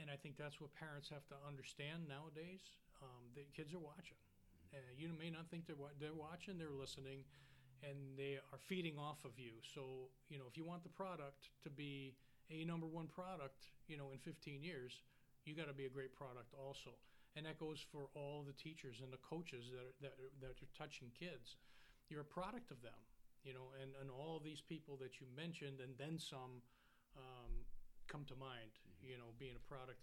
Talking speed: 210 wpm